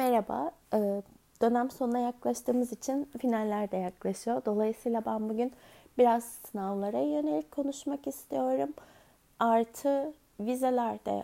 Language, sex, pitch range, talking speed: Turkish, female, 215-295 Hz, 95 wpm